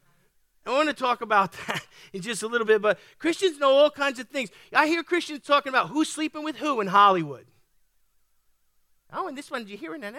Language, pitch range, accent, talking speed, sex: English, 215-290 Hz, American, 220 wpm, male